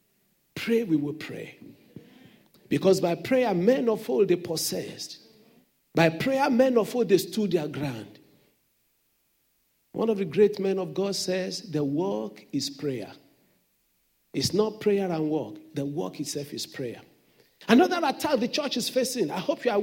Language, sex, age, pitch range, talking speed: English, male, 50-69, 180-280 Hz, 160 wpm